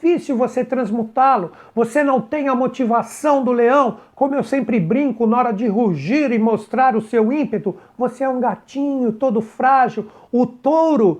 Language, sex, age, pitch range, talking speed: Portuguese, male, 60-79, 210-260 Hz, 160 wpm